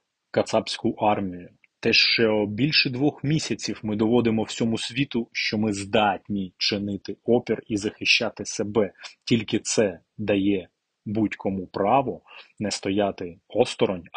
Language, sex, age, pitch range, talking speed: Ukrainian, male, 30-49, 100-125 Hz, 115 wpm